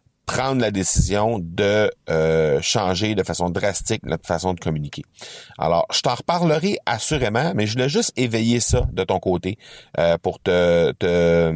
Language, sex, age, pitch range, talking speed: French, male, 30-49, 90-115 Hz, 160 wpm